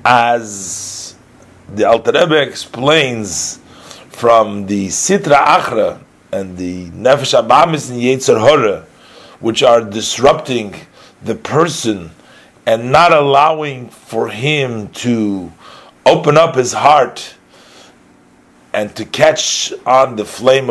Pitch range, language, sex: 115-150 Hz, English, male